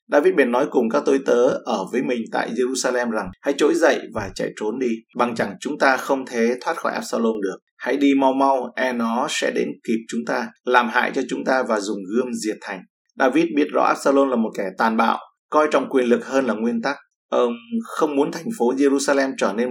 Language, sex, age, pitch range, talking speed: Vietnamese, male, 20-39, 115-140 Hz, 230 wpm